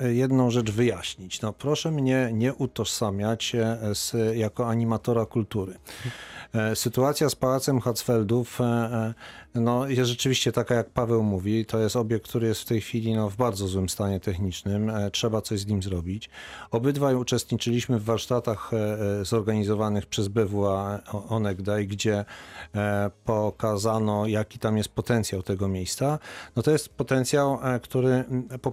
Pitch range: 105-125 Hz